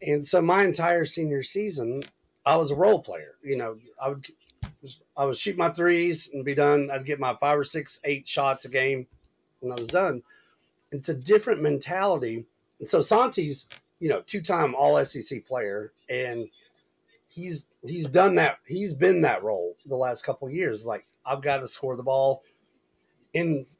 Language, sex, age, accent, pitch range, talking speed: English, male, 40-59, American, 135-170 Hz, 180 wpm